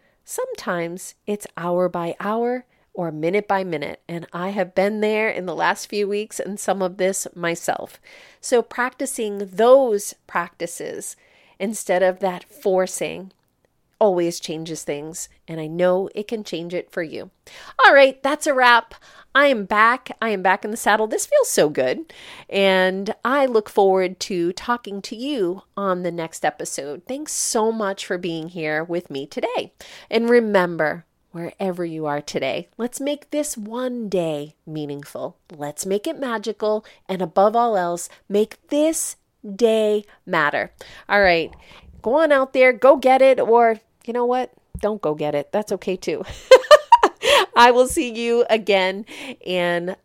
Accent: American